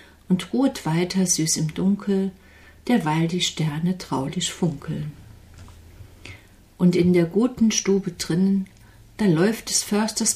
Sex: female